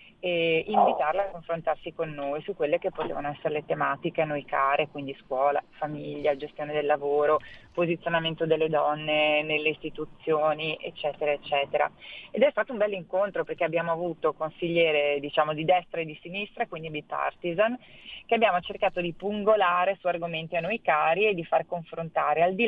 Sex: female